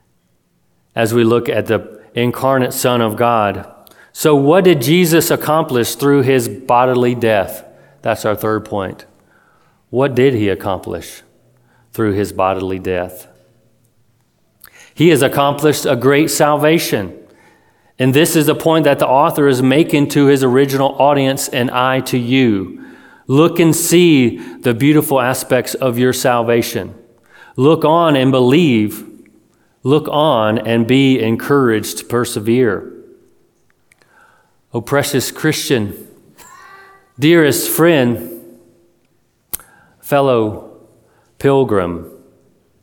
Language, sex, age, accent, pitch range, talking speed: English, male, 40-59, American, 110-140 Hz, 115 wpm